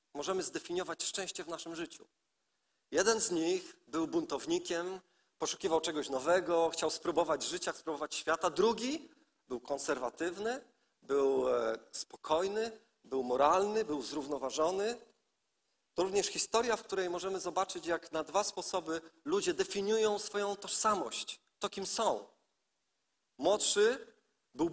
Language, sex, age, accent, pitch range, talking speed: Polish, male, 40-59, native, 155-220 Hz, 115 wpm